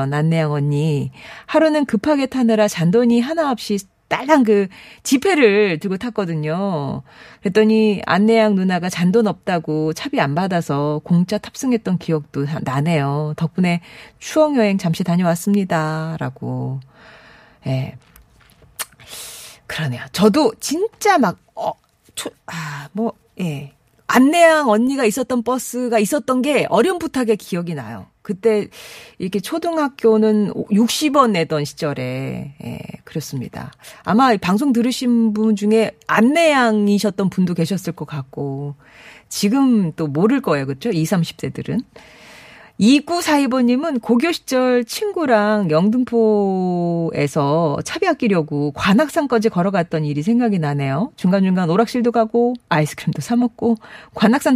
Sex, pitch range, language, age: female, 160-240 Hz, Korean, 40-59